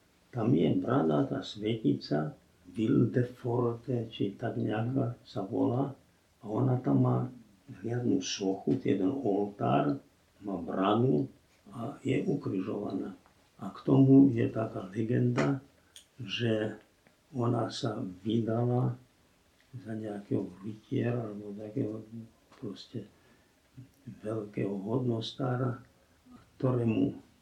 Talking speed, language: 95 wpm, Slovak